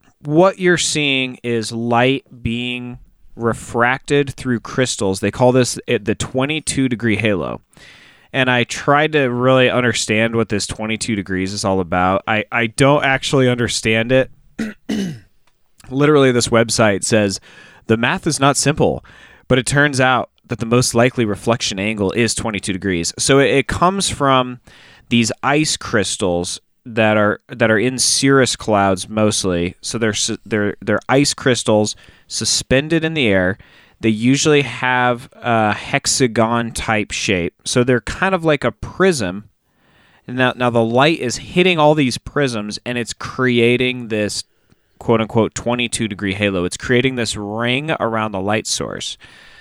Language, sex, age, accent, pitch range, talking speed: English, male, 20-39, American, 110-130 Hz, 150 wpm